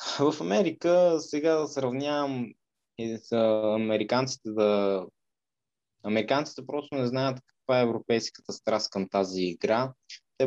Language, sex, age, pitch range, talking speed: Bulgarian, male, 20-39, 115-140 Hz, 115 wpm